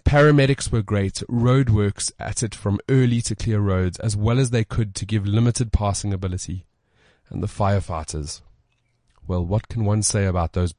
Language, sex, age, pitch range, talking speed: English, male, 30-49, 95-115 Hz, 170 wpm